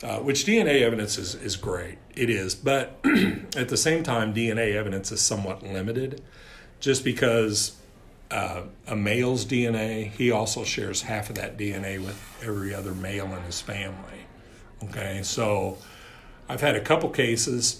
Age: 40-59